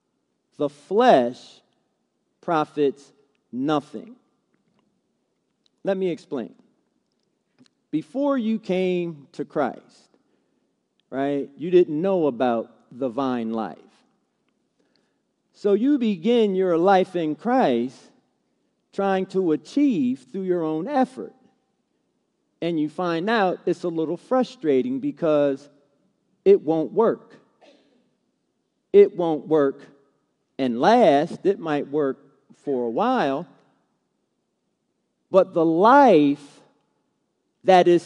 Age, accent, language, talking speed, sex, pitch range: 40-59, American, English, 100 wpm, male, 140-200 Hz